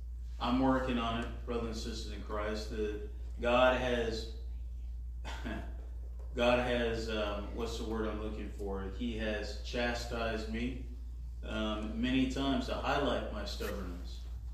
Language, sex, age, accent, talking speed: English, male, 30-49, American, 130 wpm